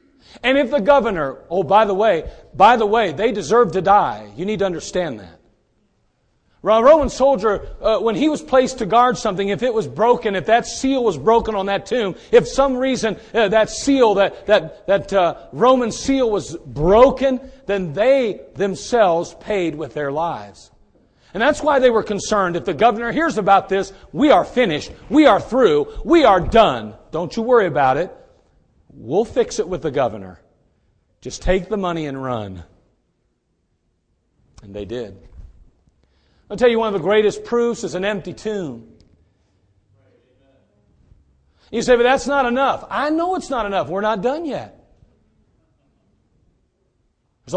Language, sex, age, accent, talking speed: English, male, 40-59, American, 170 wpm